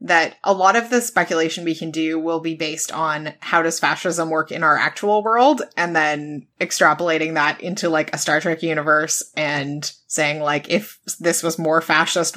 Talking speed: 190 wpm